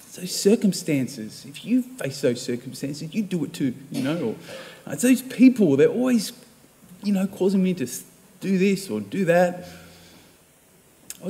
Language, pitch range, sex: English, 150-195 Hz, male